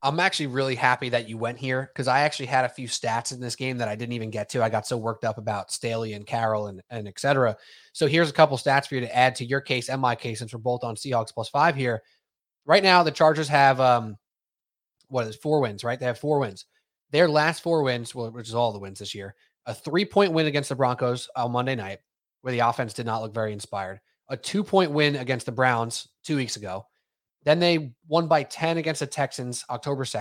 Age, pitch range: 20-39, 120-155 Hz